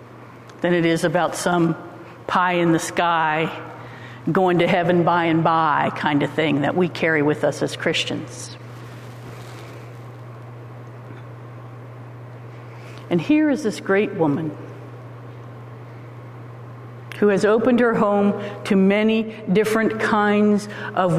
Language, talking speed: English, 115 wpm